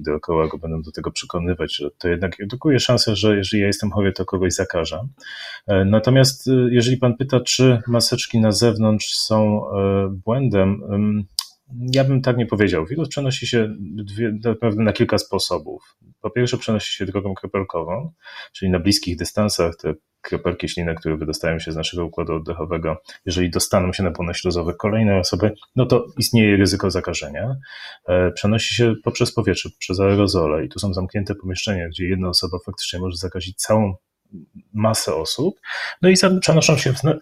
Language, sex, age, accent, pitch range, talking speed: Polish, male, 30-49, native, 95-120 Hz, 160 wpm